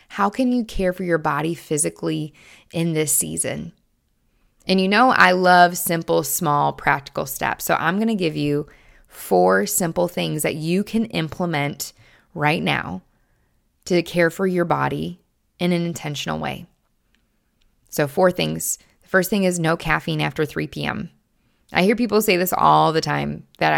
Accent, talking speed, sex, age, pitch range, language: American, 165 wpm, female, 20-39, 150-185 Hz, English